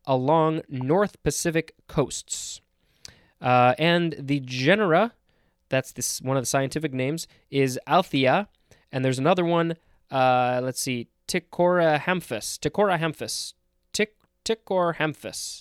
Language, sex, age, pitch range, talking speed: English, male, 20-39, 130-165 Hz, 115 wpm